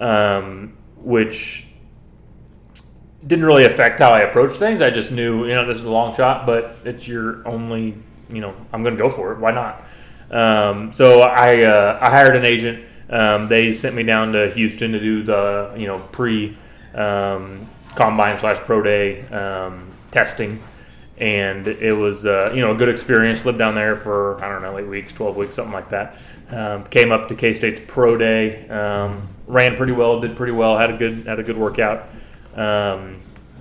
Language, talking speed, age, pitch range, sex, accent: English, 190 wpm, 20-39, 105-115 Hz, male, American